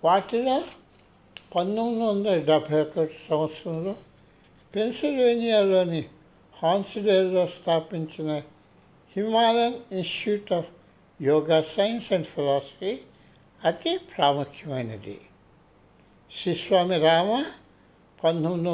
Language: Telugu